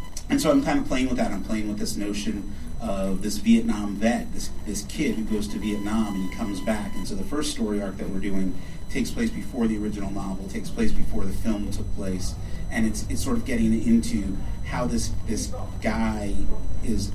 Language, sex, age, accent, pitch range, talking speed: English, male, 30-49, American, 95-115 Hz, 215 wpm